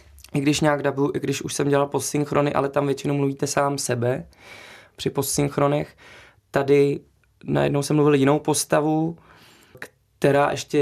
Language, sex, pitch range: Czech, male, 135-155 Hz